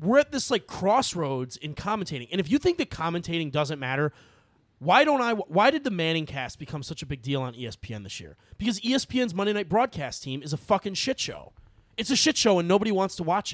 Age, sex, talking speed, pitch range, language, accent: 30-49, male, 230 wpm, 140-205 Hz, English, American